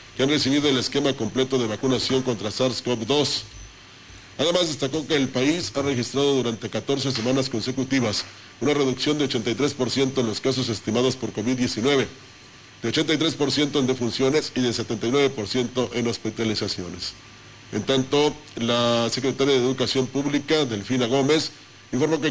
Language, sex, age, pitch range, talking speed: Spanish, male, 40-59, 110-140 Hz, 135 wpm